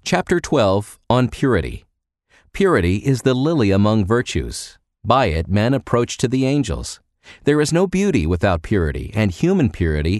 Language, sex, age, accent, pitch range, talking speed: English, male, 50-69, American, 90-125 Hz, 155 wpm